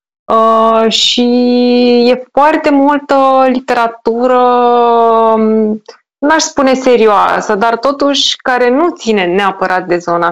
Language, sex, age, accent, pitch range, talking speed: Romanian, female, 20-39, native, 195-250 Hz, 100 wpm